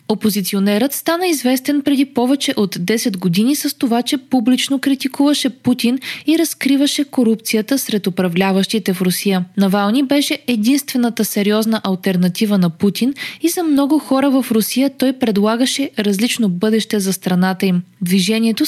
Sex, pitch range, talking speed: female, 195-275 Hz, 135 wpm